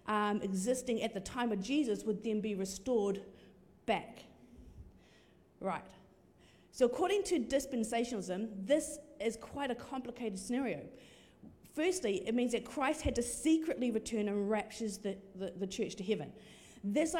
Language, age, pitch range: English, 40-59, 200-255 Hz